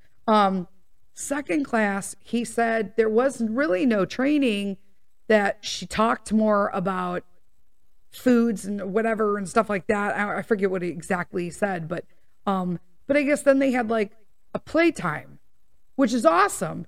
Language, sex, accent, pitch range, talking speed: English, female, American, 185-230 Hz, 155 wpm